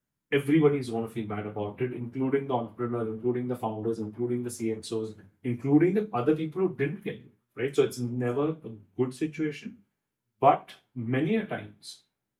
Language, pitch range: English, 110-145 Hz